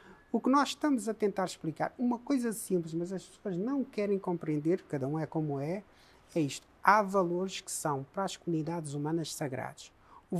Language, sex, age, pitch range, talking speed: Portuguese, male, 50-69, 170-220 Hz, 190 wpm